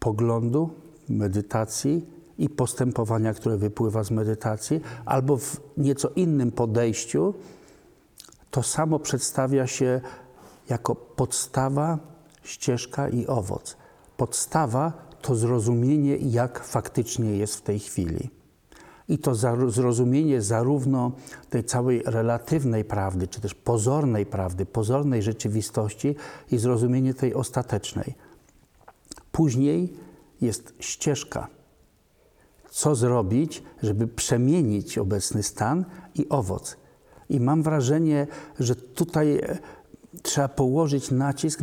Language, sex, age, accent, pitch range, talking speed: Polish, male, 50-69, native, 115-145 Hz, 100 wpm